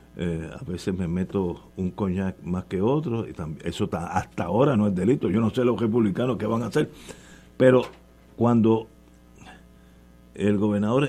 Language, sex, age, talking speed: Spanish, male, 50-69, 175 wpm